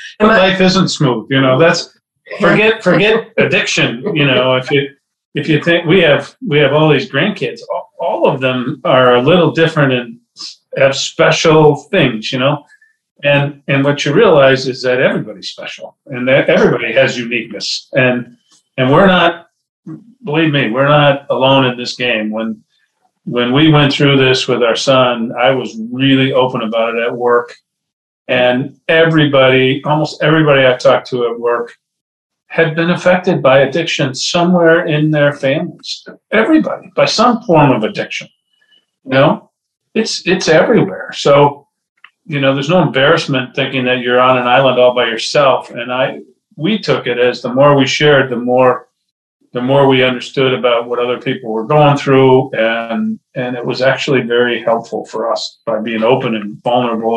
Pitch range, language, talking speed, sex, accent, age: 125-160 Hz, English, 170 wpm, male, American, 40-59